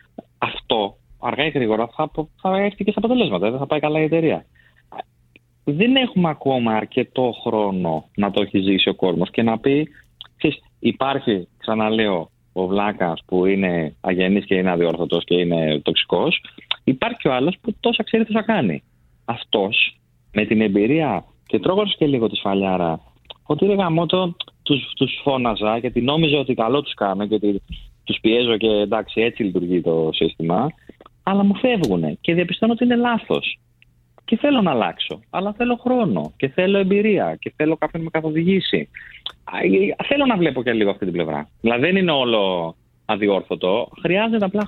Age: 30-49